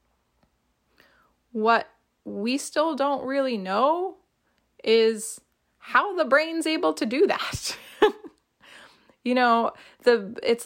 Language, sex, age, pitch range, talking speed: English, female, 20-39, 210-265 Hz, 100 wpm